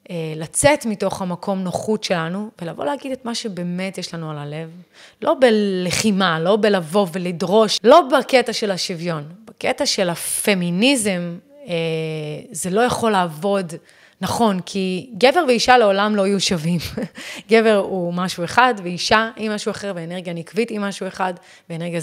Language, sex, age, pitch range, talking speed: Hebrew, female, 30-49, 175-230 Hz, 140 wpm